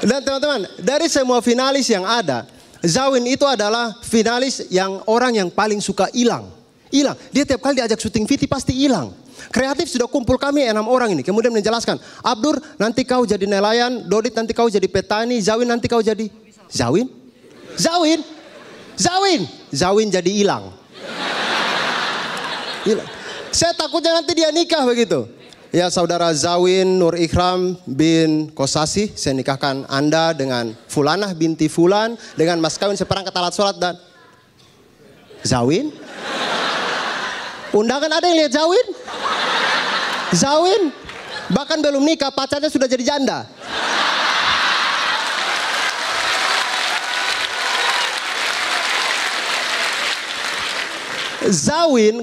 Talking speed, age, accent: 110 wpm, 30-49, native